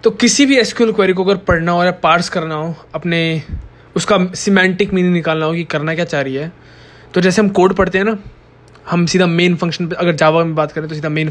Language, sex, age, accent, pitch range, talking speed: Hindi, male, 20-39, native, 155-205 Hz, 240 wpm